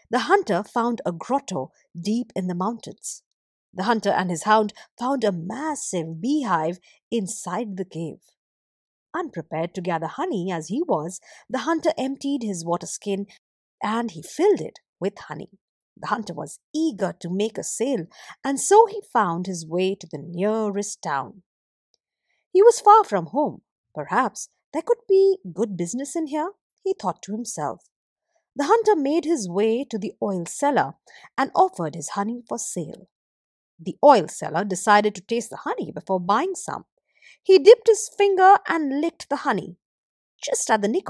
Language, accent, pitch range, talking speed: English, Indian, 185-295 Hz, 165 wpm